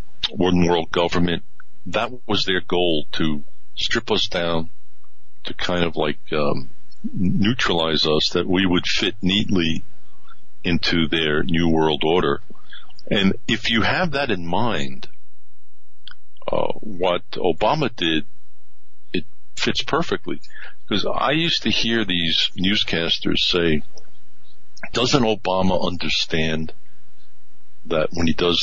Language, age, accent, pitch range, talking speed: English, 60-79, American, 85-125 Hz, 115 wpm